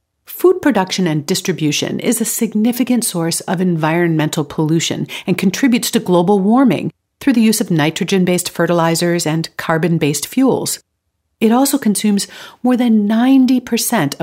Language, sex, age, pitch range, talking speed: English, female, 50-69, 170-235 Hz, 130 wpm